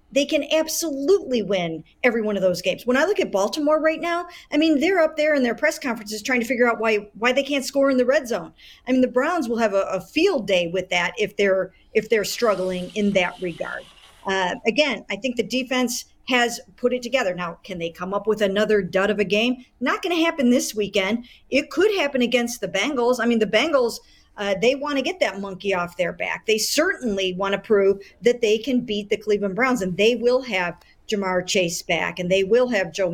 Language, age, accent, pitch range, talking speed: English, 50-69, American, 190-250 Hz, 230 wpm